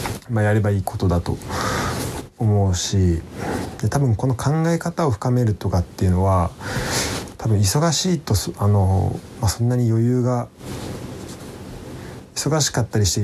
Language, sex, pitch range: Japanese, male, 95-120 Hz